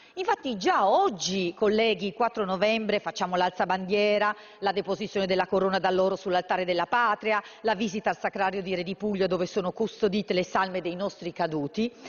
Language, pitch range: Italian, 195-285 Hz